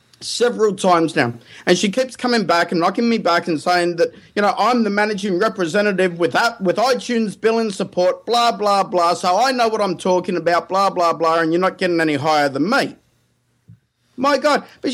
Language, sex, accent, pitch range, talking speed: English, male, Australian, 185-245 Hz, 205 wpm